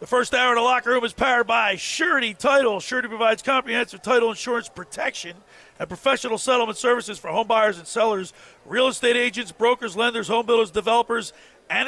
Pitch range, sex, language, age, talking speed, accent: 215-255 Hz, male, English, 40-59, 180 wpm, American